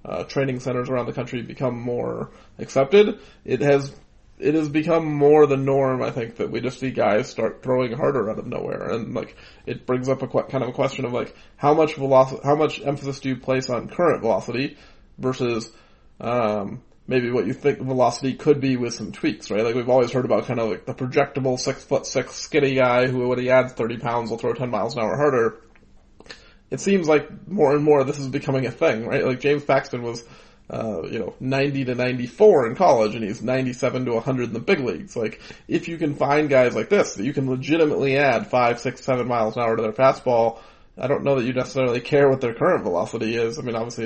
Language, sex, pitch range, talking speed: English, male, 120-140 Hz, 225 wpm